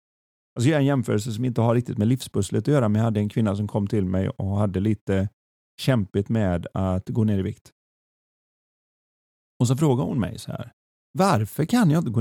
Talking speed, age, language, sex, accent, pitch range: 215 wpm, 40-59, Swedish, male, native, 105-140 Hz